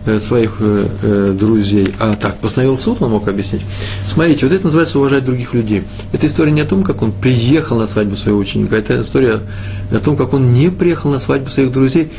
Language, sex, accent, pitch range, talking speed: Russian, male, native, 100-125 Hz, 195 wpm